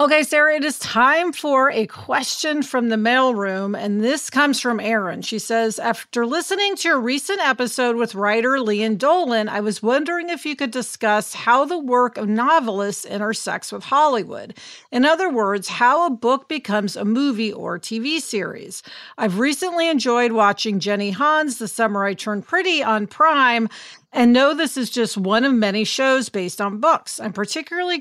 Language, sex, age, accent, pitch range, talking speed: English, female, 50-69, American, 210-275 Hz, 175 wpm